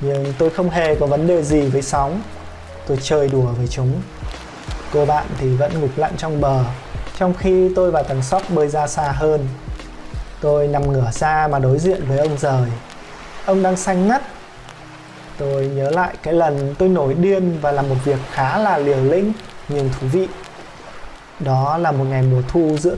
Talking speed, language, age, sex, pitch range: 190 wpm, Vietnamese, 20-39, male, 135-165 Hz